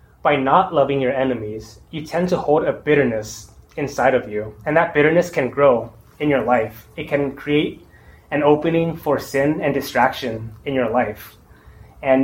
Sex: male